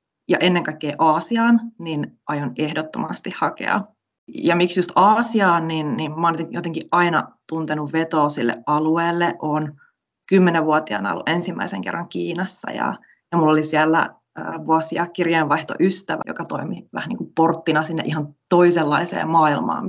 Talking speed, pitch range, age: 130 wpm, 155-190 Hz, 30-49